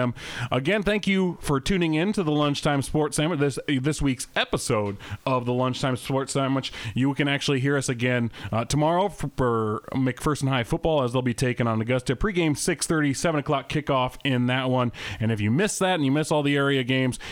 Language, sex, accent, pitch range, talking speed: English, male, American, 115-150 Hz, 200 wpm